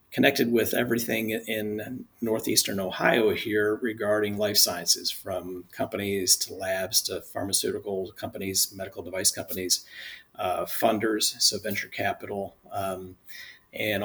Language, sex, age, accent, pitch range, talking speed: English, male, 40-59, American, 95-105 Hz, 115 wpm